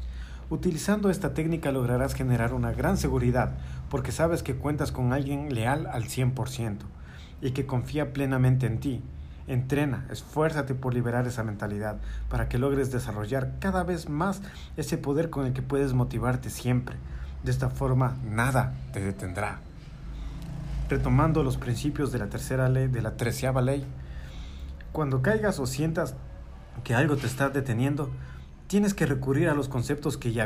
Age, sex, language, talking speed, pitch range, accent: 40-59, male, Spanish, 155 wpm, 115-150 Hz, Mexican